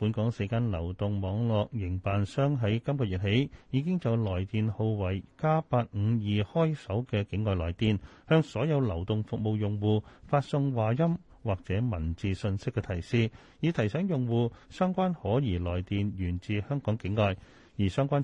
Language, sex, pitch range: Chinese, male, 100-135 Hz